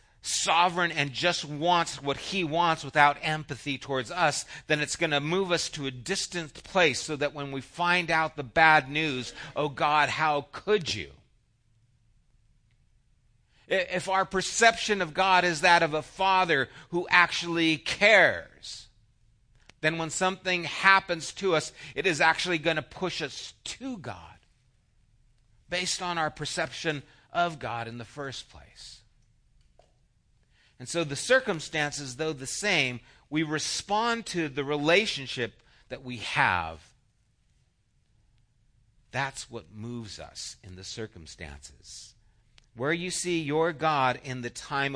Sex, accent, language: male, American, English